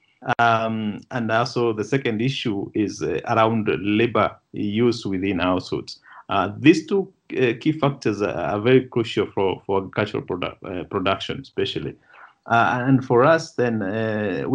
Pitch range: 110-130 Hz